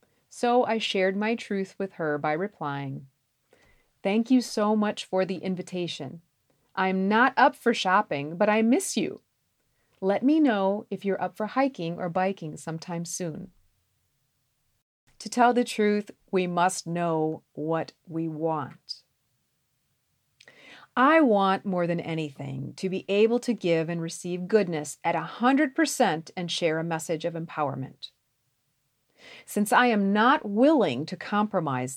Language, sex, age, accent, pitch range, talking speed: English, female, 40-59, American, 155-220 Hz, 140 wpm